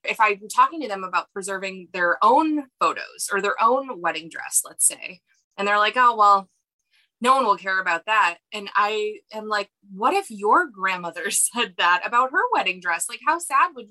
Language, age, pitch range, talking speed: English, 20-39, 180-225 Hz, 200 wpm